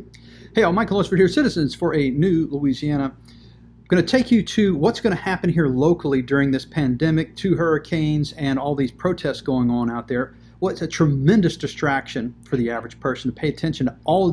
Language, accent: English, American